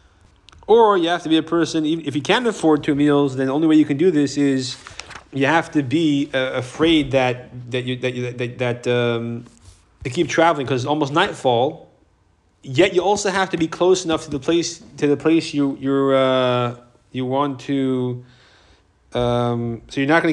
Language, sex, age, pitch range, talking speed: English, male, 30-49, 120-150 Hz, 200 wpm